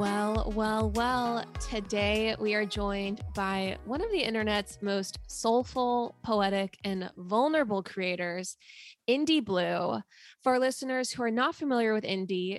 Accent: American